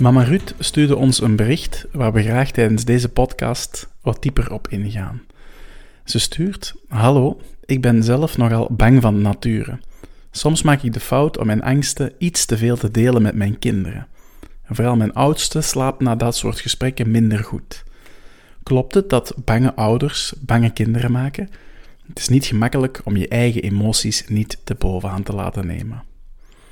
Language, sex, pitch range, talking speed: Dutch, male, 110-125 Hz, 165 wpm